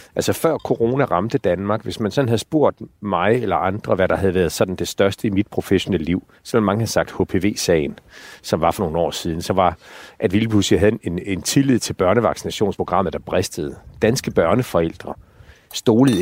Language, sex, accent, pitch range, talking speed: Danish, male, native, 95-115 Hz, 185 wpm